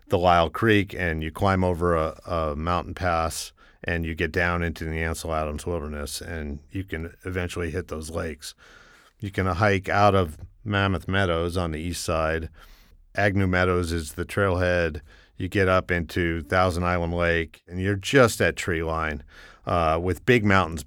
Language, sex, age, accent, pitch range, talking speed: English, male, 50-69, American, 80-95 Hz, 175 wpm